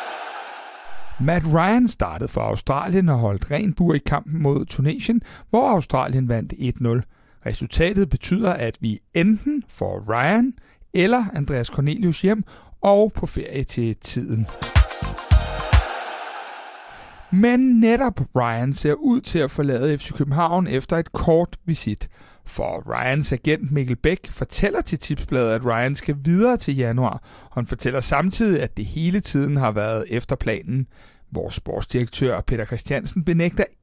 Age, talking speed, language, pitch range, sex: 60-79, 135 wpm, Danish, 125-185 Hz, male